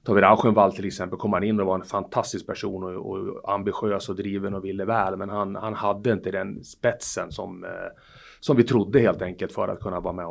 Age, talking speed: 30-49, 225 wpm